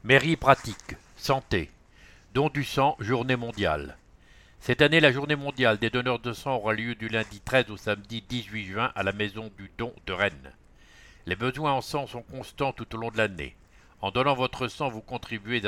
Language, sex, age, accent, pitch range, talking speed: English, male, 60-79, French, 100-125 Hz, 190 wpm